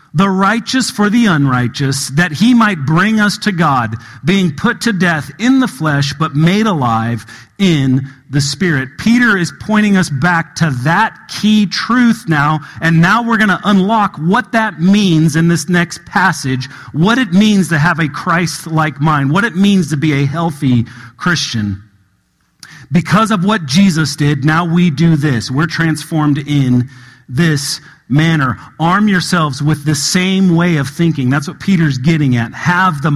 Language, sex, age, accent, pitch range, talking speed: English, male, 40-59, American, 140-195 Hz, 170 wpm